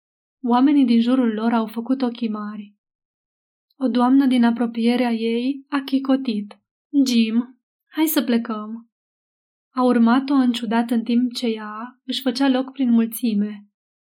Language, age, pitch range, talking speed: Romanian, 20-39, 225-260 Hz, 135 wpm